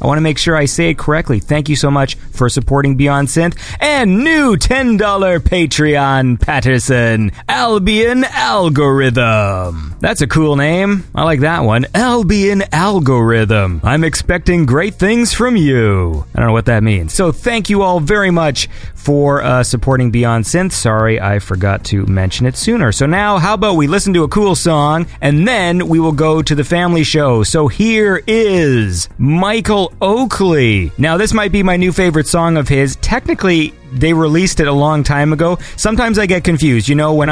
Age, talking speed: 30-49, 180 wpm